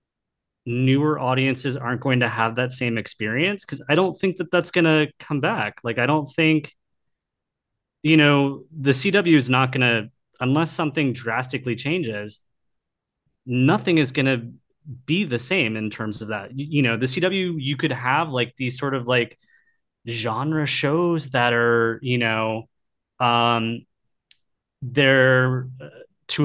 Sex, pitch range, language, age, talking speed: male, 115-145 Hz, English, 30-49, 155 wpm